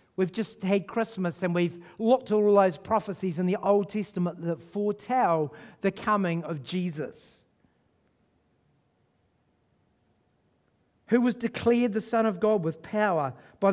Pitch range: 175-225 Hz